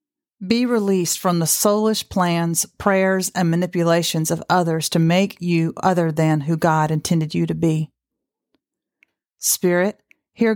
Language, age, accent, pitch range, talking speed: English, 40-59, American, 170-200 Hz, 135 wpm